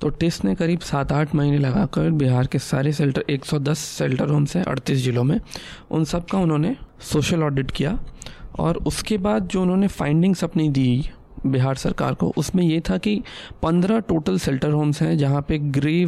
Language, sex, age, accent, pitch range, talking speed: English, male, 20-39, Indian, 135-175 Hz, 175 wpm